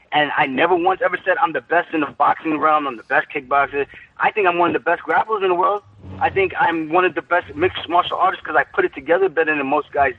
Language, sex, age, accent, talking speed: English, male, 20-39, American, 275 wpm